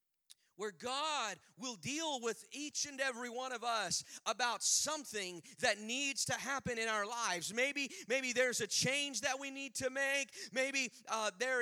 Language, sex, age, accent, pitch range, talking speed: English, male, 40-59, American, 215-275 Hz, 170 wpm